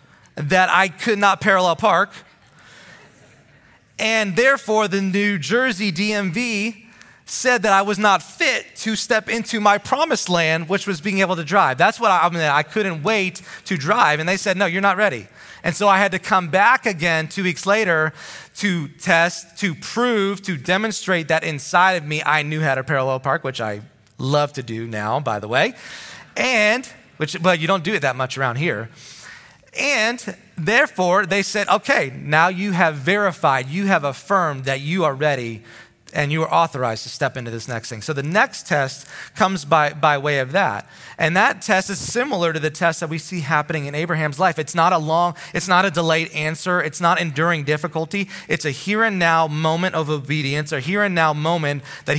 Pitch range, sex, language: 150-195 Hz, male, English